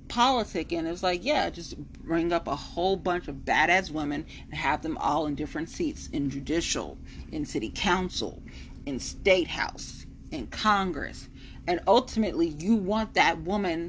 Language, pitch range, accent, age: English, 155-225 Hz, American, 30-49